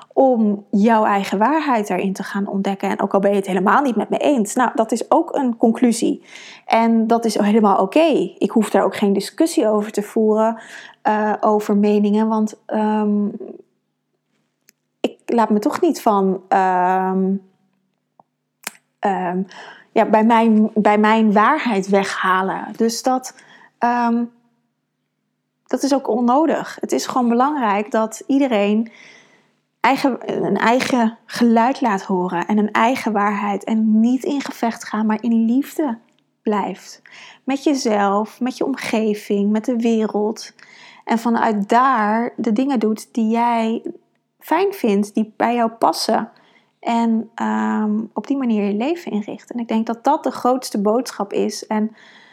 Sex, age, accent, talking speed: female, 20-39, Dutch, 140 wpm